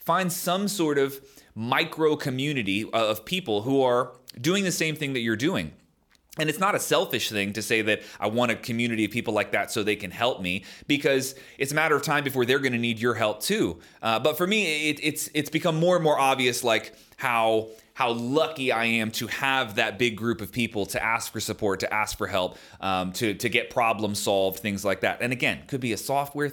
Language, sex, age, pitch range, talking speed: English, male, 30-49, 115-155 Hz, 225 wpm